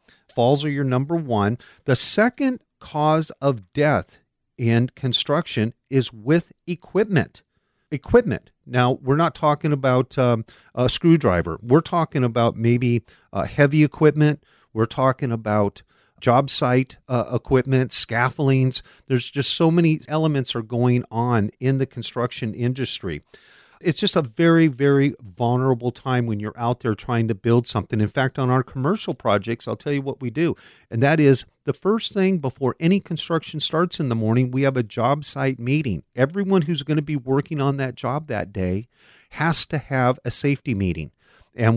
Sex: male